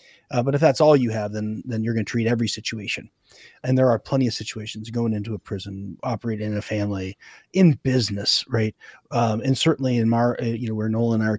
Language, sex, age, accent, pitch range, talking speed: English, male, 30-49, American, 110-130 Hz, 230 wpm